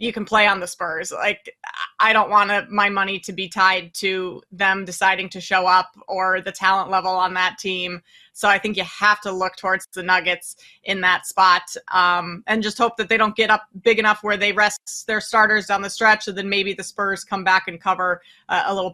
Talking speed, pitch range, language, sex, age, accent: 225 wpm, 185-215 Hz, English, female, 20-39, American